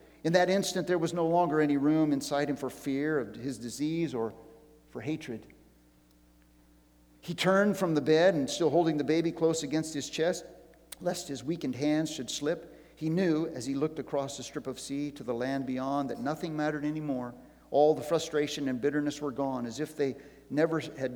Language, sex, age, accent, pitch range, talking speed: English, male, 50-69, American, 125-160 Hz, 195 wpm